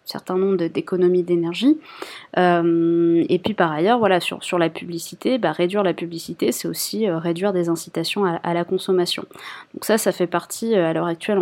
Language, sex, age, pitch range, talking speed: French, female, 20-39, 170-215 Hz, 190 wpm